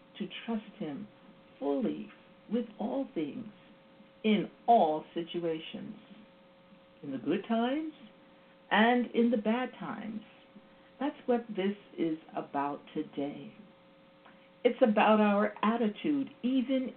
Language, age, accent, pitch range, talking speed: English, 60-79, American, 165-250 Hz, 105 wpm